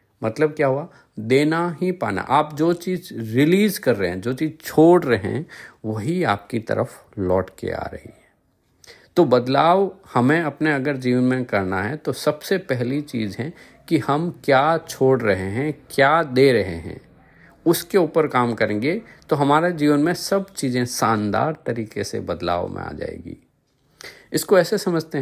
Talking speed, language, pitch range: 165 wpm, Hindi, 120-170 Hz